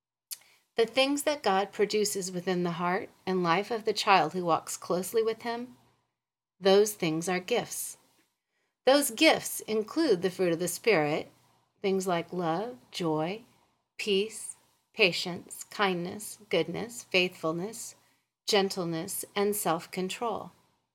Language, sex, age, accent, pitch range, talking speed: English, female, 40-59, American, 180-235 Hz, 120 wpm